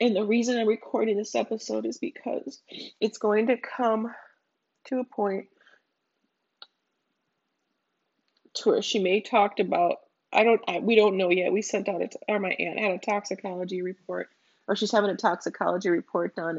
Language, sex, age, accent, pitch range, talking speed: English, female, 30-49, American, 195-240 Hz, 175 wpm